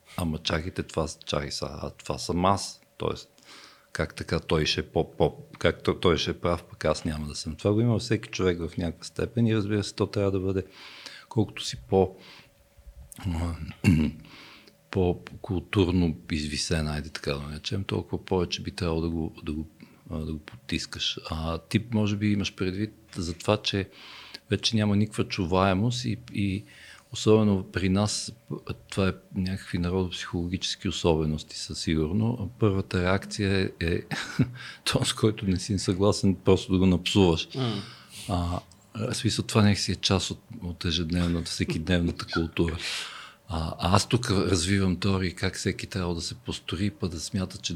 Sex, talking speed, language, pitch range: male, 150 wpm, Bulgarian, 85-105 Hz